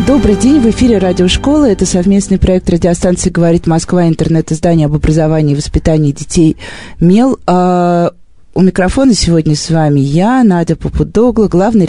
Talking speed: 140 wpm